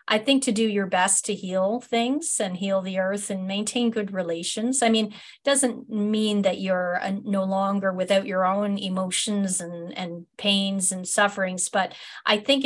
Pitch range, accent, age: 190-225 Hz, American, 40-59